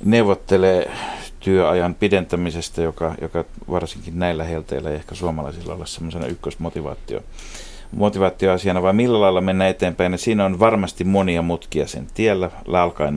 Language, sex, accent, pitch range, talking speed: Finnish, male, native, 80-100 Hz, 130 wpm